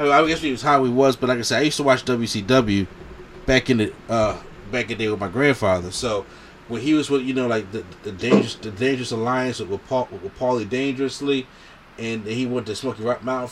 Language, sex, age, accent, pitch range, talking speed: English, male, 30-49, American, 110-130 Hz, 240 wpm